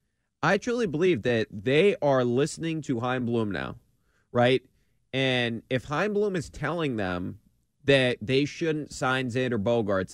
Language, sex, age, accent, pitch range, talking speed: English, male, 30-49, American, 115-155 Hz, 150 wpm